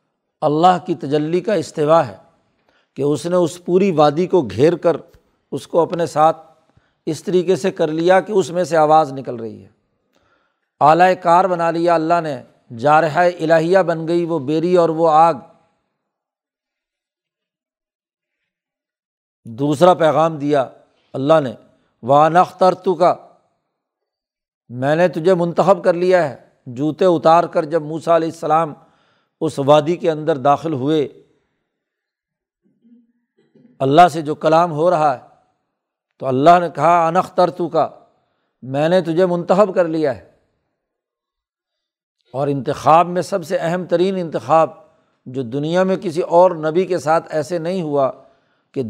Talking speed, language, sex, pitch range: 140 wpm, Urdu, male, 150-180 Hz